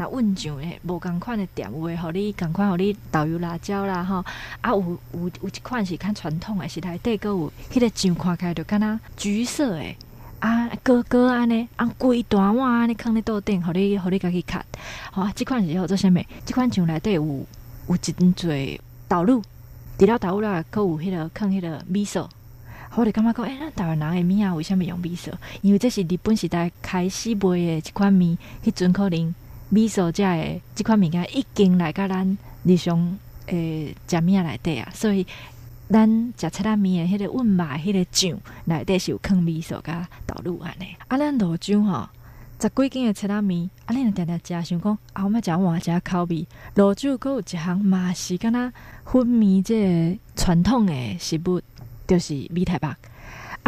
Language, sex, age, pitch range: Chinese, female, 20-39, 170-210 Hz